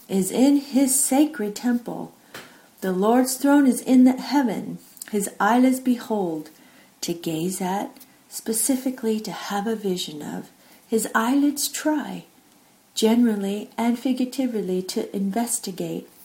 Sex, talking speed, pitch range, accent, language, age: female, 115 wpm, 185-250 Hz, American, English, 50-69